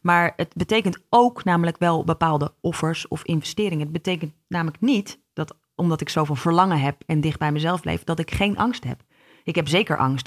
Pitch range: 150-180 Hz